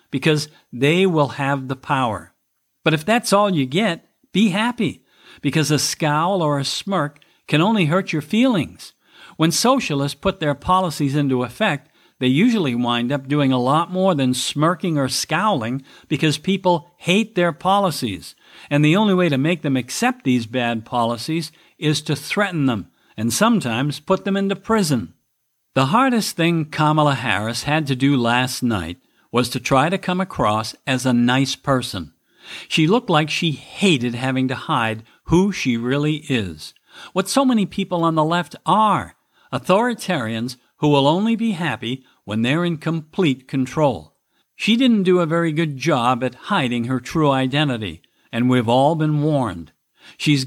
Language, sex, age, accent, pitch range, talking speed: English, male, 50-69, American, 130-180 Hz, 165 wpm